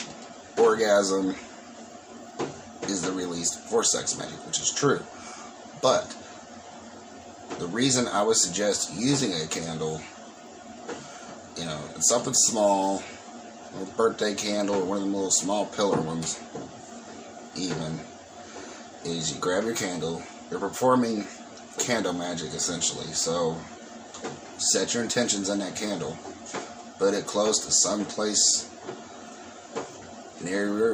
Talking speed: 115 wpm